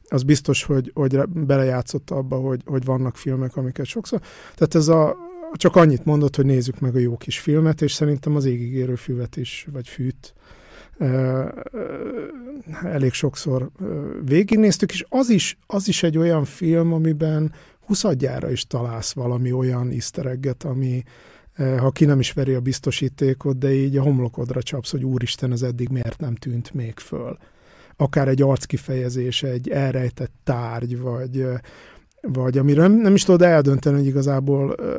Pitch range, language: 130-150 Hz, Hungarian